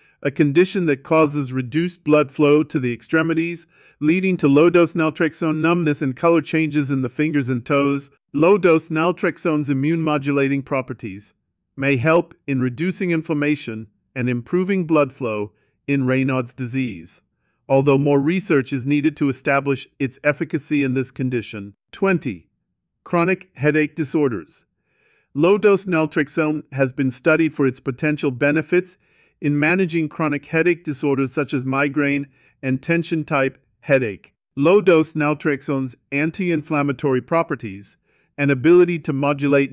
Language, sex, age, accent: English, male, 50-69, American